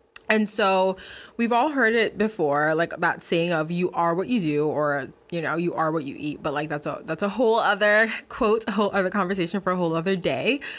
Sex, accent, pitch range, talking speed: female, American, 165-220 Hz, 235 wpm